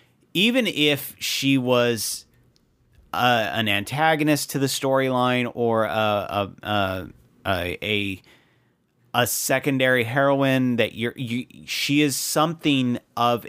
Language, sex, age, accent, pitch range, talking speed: English, male, 30-49, American, 110-135 Hz, 110 wpm